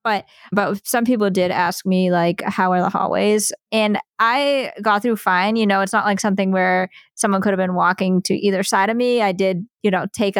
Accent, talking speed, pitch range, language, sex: American, 225 wpm, 185-220 Hz, English, female